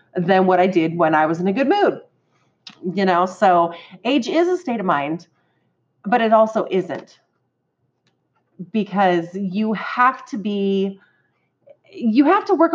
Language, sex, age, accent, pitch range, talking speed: English, female, 30-49, American, 175-235 Hz, 155 wpm